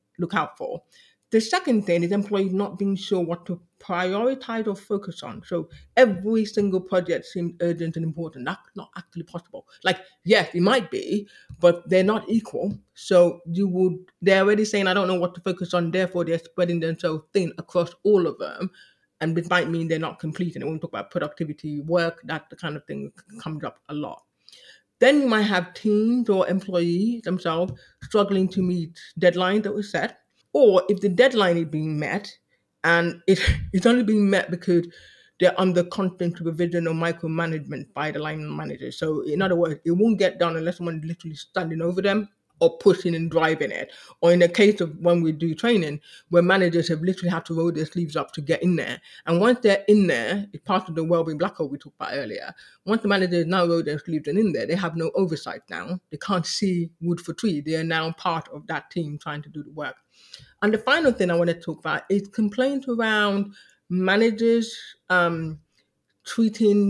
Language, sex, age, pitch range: English, female, 30-49, 165-200 Hz